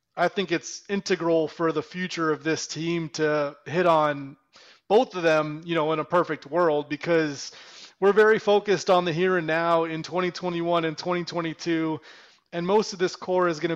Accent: American